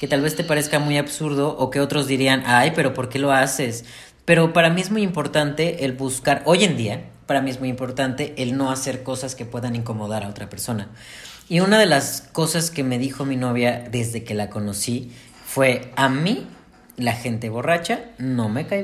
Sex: female